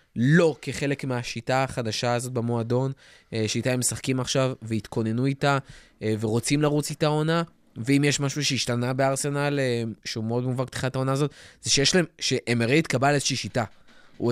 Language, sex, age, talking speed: Hebrew, male, 20-39, 145 wpm